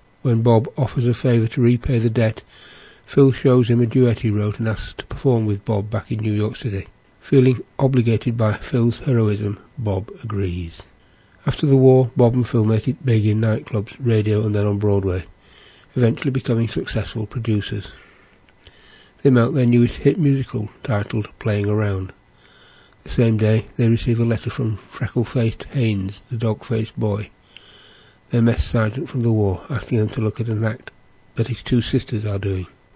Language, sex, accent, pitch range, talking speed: English, male, British, 105-125 Hz, 175 wpm